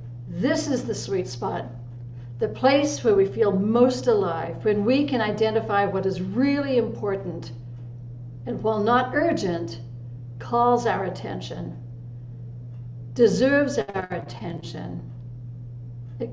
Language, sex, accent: English, female, American